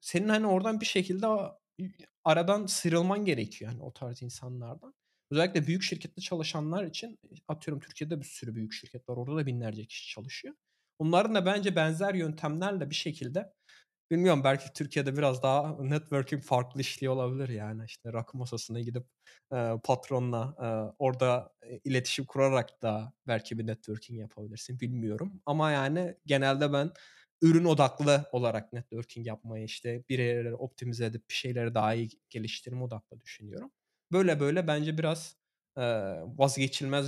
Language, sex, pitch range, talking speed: Turkish, male, 120-155 Hz, 140 wpm